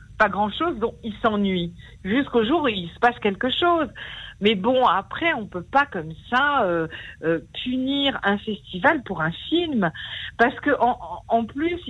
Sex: female